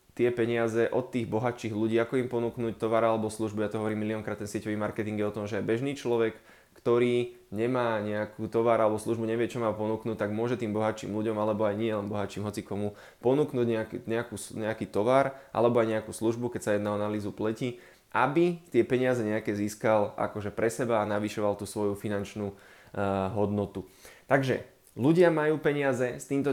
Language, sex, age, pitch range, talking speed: Slovak, male, 20-39, 105-120 Hz, 185 wpm